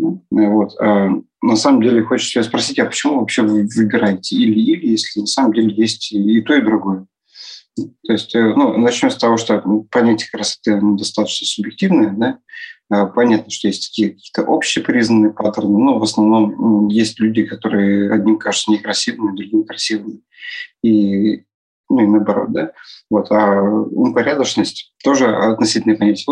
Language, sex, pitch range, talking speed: Russian, male, 105-115 Hz, 140 wpm